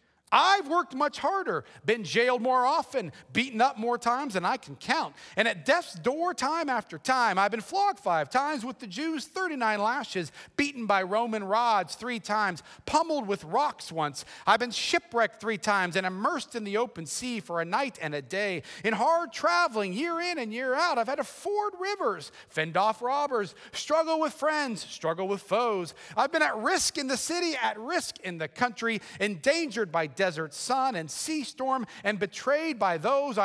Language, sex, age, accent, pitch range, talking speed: English, male, 40-59, American, 185-290 Hz, 190 wpm